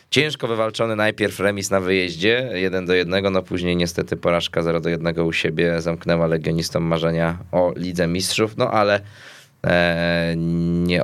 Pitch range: 80-90 Hz